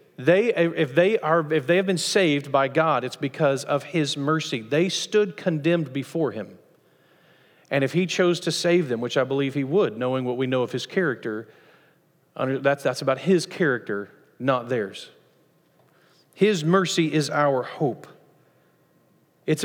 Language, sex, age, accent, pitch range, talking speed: English, male, 40-59, American, 120-155 Hz, 160 wpm